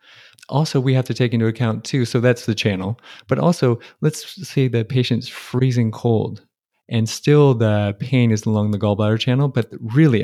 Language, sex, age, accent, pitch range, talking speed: English, male, 30-49, American, 105-125 Hz, 180 wpm